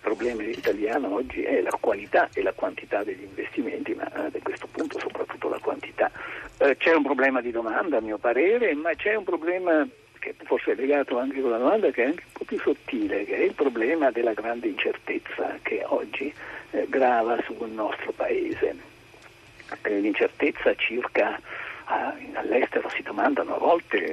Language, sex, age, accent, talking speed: Italian, male, 60-79, native, 165 wpm